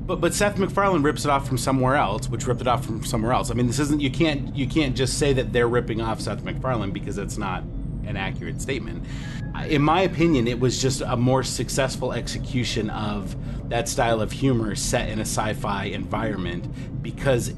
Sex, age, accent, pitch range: male, 30-49, American, 120-140 Hz